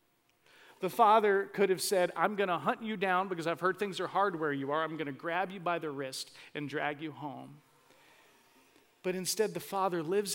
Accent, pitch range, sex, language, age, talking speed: American, 135-180 Hz, male, English, 40-59, 215 wpm